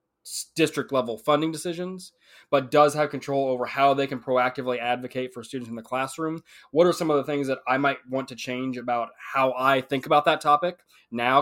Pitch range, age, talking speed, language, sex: 130-155 Hz, 20-39, 205 wpm, English, male